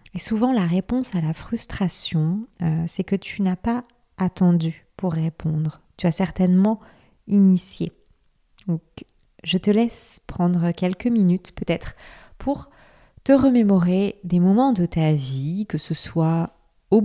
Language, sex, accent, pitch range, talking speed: French, female, French, 165-210 Hz, 140 wpm